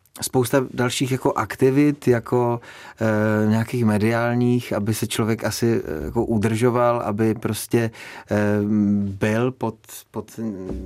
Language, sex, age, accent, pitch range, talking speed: Czech, male, 30-49, native, 105-120 Hz, 90 wpm